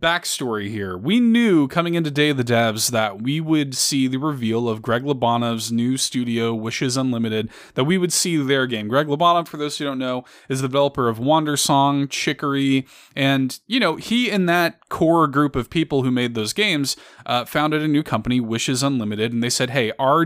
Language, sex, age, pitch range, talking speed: English, male, 20-39, 125-175 Hz, 200 wpm